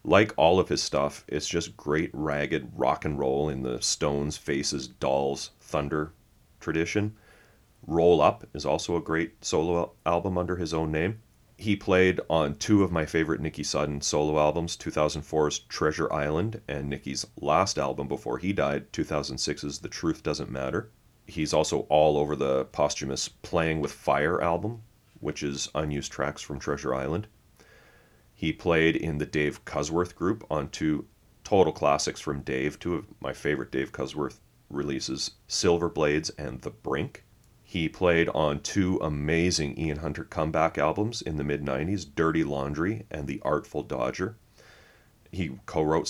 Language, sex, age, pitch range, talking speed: English, male, 30-49, 75-90 Hz, 155 wpm